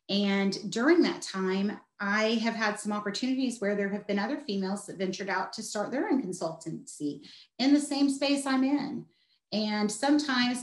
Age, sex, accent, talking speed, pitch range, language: 30-49, female, American, 175 wpm, 190-235 Hz, English